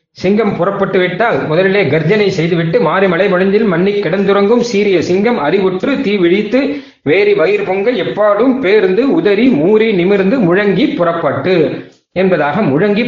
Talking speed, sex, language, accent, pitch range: 125 wpm, male, Tamil, native, 155-210 Hz